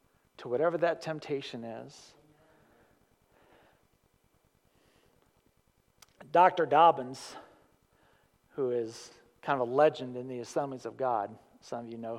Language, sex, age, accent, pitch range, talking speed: English, male, 40-59, American, 125-175 Hz, 110 wpm